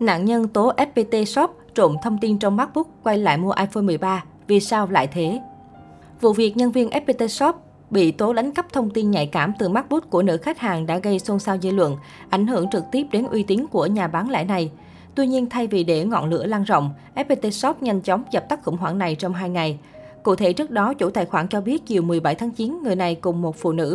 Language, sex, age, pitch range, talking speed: Vietnamese, female, 20-39, 180-235 Hz, 245 wpm